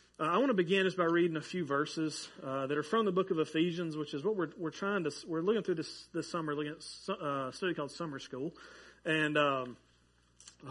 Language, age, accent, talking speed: English, 30-49, American, 235 wpm